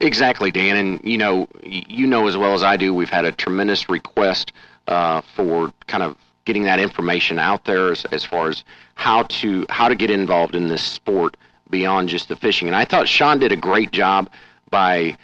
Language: English